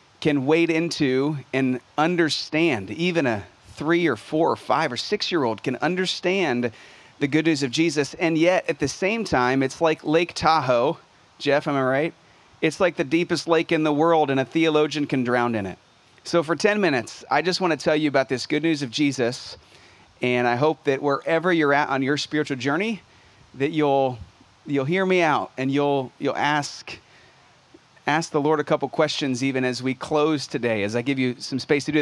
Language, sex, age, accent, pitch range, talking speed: English, male, 30-49, American, 135-170 Hz, 200 wpm